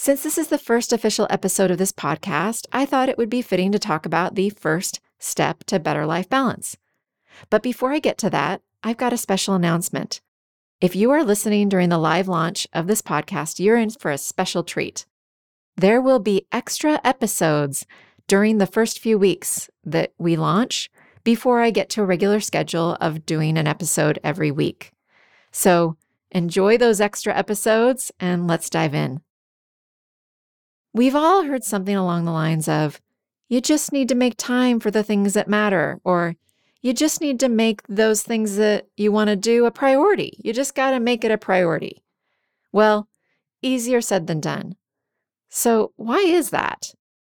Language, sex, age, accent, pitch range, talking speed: English, female, 30-49, American, 165-235 Hz, 175 wpm